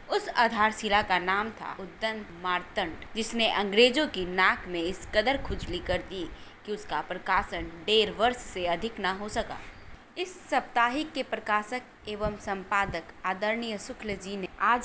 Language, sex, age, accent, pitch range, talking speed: Hindi, female, 20-39, native, 190-245 Hz, 155 wpm